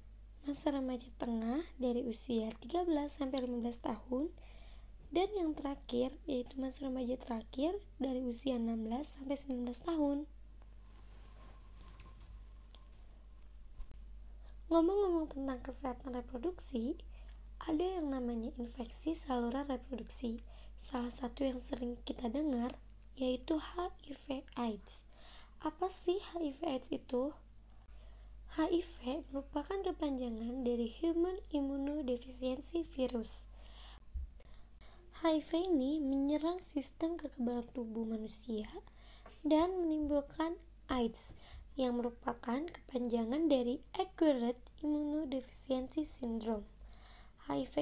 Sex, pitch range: male, 235-300 Hz